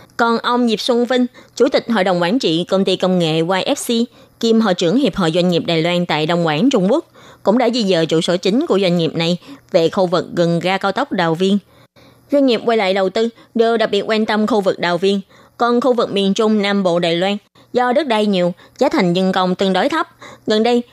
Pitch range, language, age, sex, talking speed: 175-240 Hz, Vietnamese, 20-39, female, 250 wpm